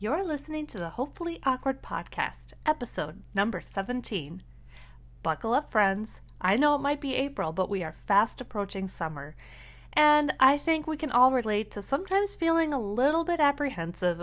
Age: 30-49